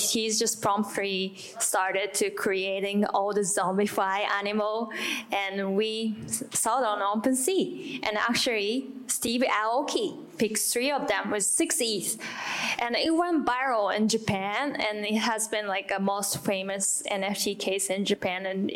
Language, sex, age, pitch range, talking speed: English, female, 10-29, 200-240 Hz, 145 wpm